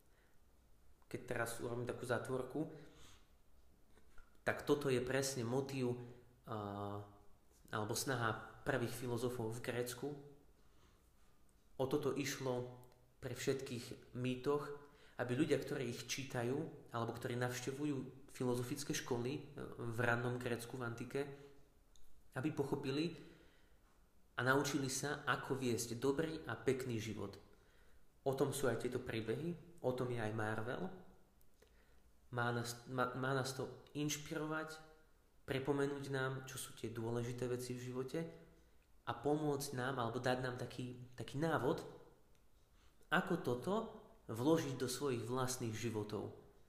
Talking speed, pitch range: 115 wpm, 115-135 Hz